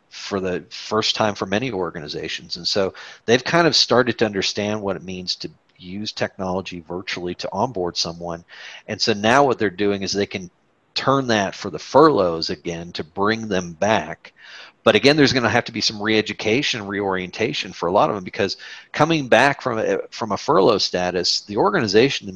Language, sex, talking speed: English, male, 185 wpm